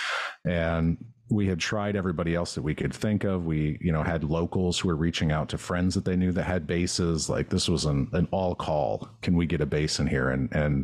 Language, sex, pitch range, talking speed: English, male, 75-95 Hz, 245 wpm